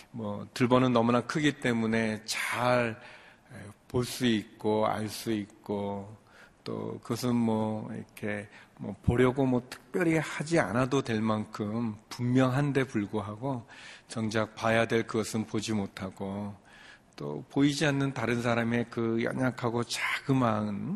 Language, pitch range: Korean, 105-120 Hz